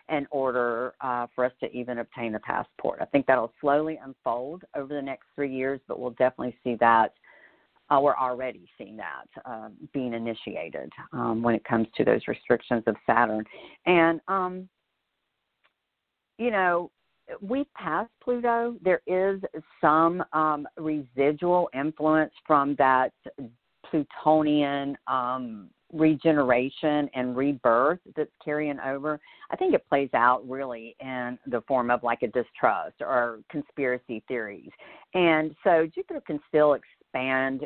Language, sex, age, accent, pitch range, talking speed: English, female, 50-69, American, 125-155 Hz, 140 wpm